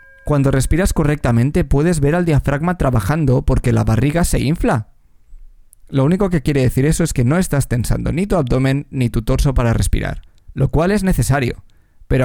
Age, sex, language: 20-39, male, Spanish